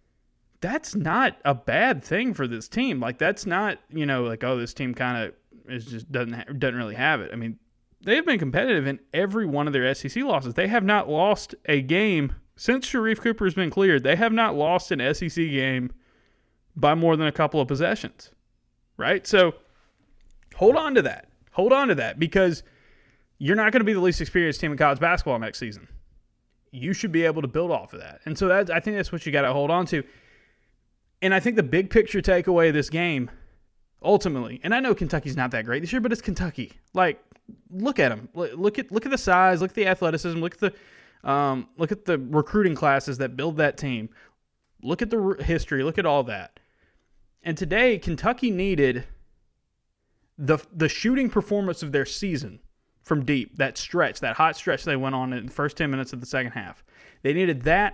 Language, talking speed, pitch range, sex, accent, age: English, 210 wpm, 135-195 Hz, male, American, 30-49